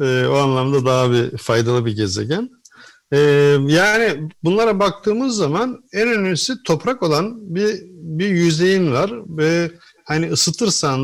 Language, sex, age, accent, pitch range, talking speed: Turkish, male, 50-69, native, 125-180 Hz, 130 wpm